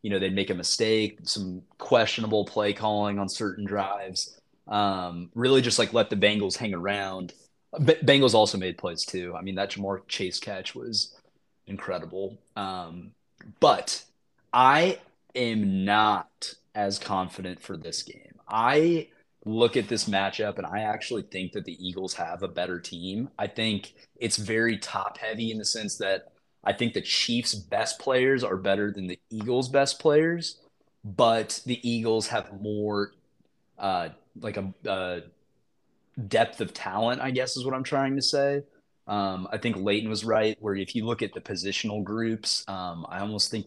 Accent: American